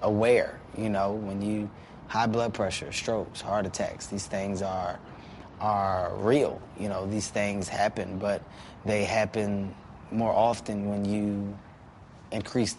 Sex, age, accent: male, 20-39, American